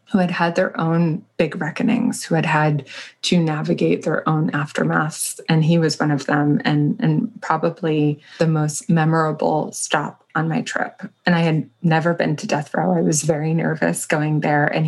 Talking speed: 185 wpm